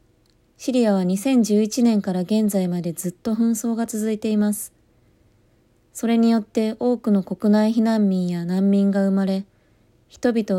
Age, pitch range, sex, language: 20-39, 185-230 Hz, female, Japanese